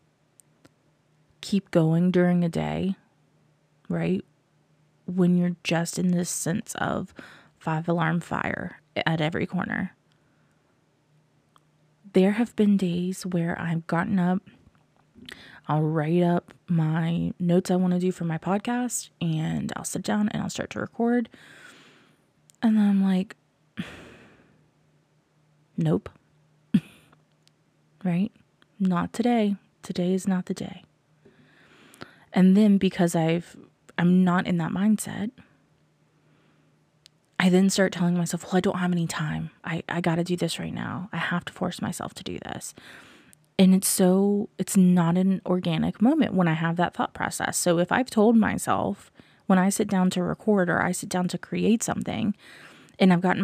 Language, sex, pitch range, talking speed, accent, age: English, female, 170-200 Hz, 150 wpm, American, 20-39